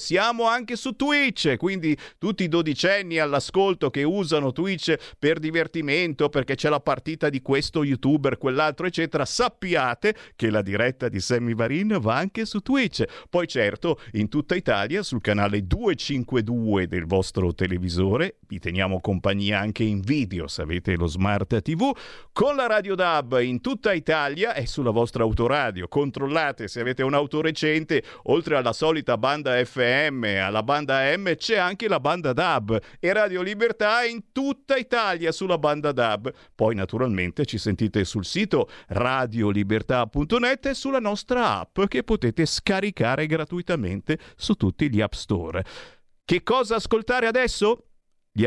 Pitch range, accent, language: 115-185 Hz, native, Italian